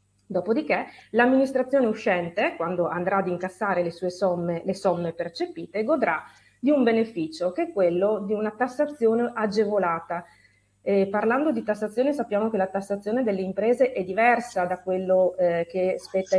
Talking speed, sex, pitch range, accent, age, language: 150 wpm, female, 175-220 Hz, native, 30-49, Italian